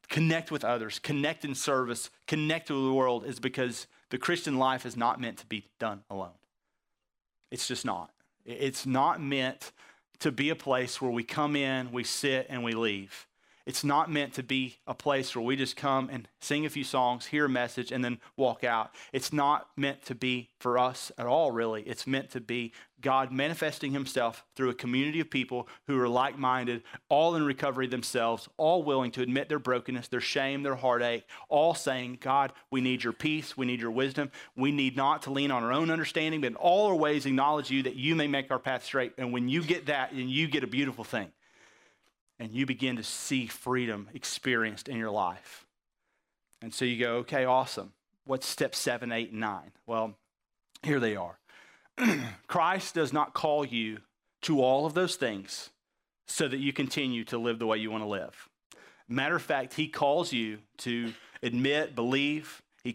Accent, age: American, 30-49